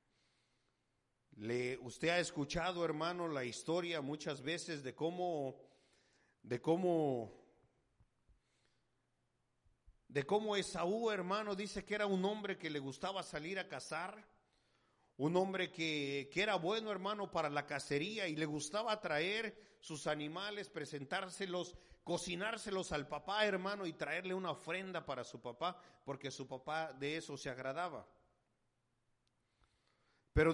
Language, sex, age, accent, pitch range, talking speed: English, male, 50-69, Mexican, 140-190 Hz, 125 wpm